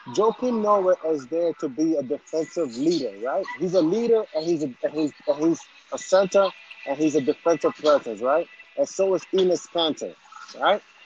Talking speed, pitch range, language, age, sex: 165 wpm, 160-260 Hz, English, 30-49, male